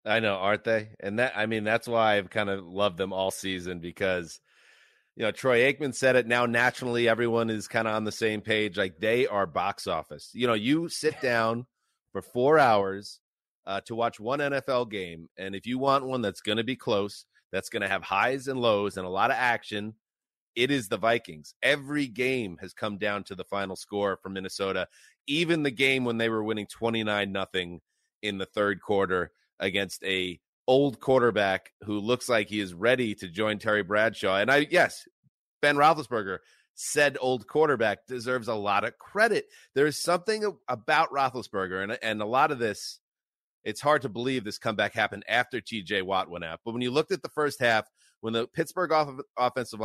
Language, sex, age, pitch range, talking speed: English, male, 30-49, 100-130 Hz, 200 wpm